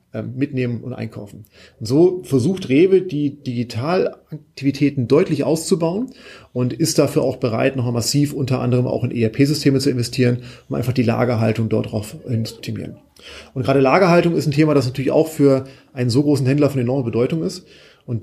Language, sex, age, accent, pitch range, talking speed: German, male, 30-49, German, 125-150 Hz, 170 wpm